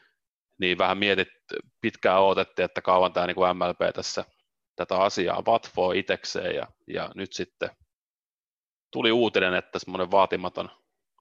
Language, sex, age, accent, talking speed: Finnish, male, 30-49, native, 130 wpm